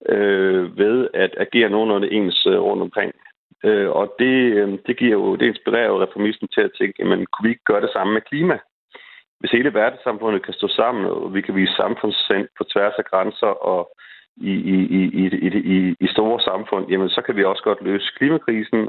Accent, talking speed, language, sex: native, 190 wpm, Danish, male